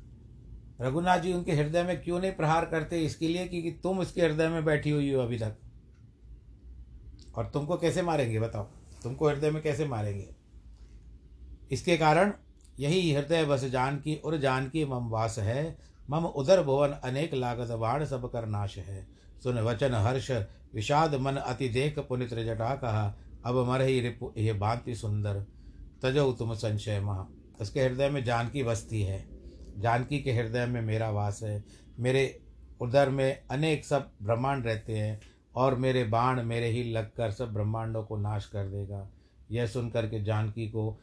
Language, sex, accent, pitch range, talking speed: Hindi, male, native, 110-135 Hz, 160 wpm